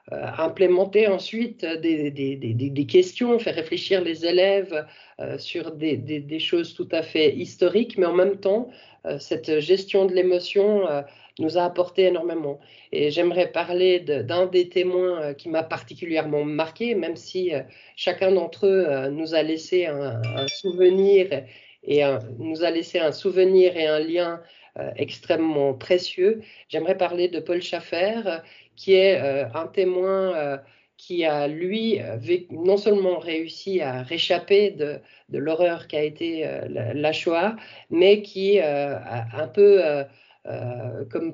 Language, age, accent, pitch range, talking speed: French, 50-69, French, 150-190 Hz, 160 wpm